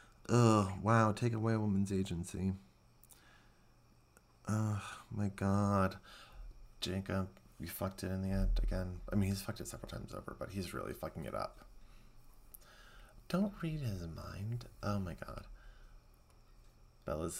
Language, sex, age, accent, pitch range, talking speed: English, male, 30-49, American, 95-110 Hz, 140 wpm